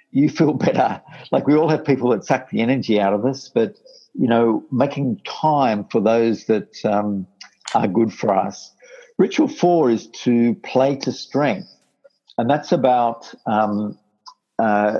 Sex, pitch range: male, 110-145 Hz